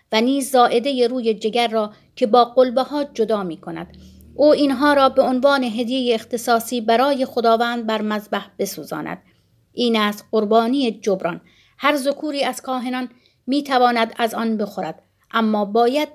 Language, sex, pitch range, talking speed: Persian, female, 220-260 Hz, 140 wpm